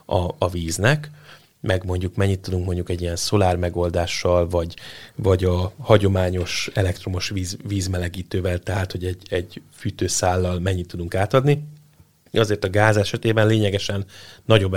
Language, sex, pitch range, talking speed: Hungarian, male, 90-110 Hz, 130 wpm